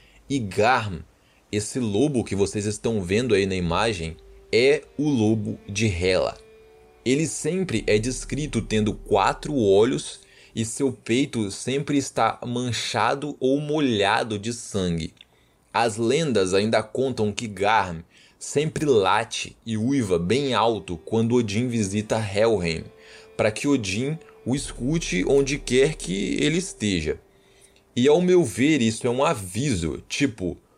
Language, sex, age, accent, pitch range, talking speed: Portuguese, male, 20-39, Brazilian, 100-135 Hz, 135 wpm